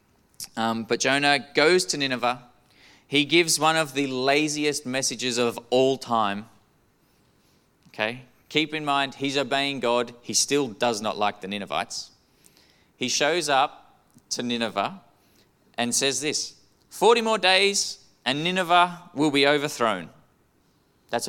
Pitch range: 120-160 Hz